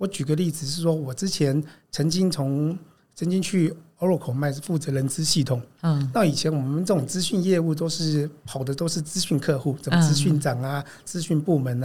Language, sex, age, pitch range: Chinese, male, 50-69, 140-175 Hz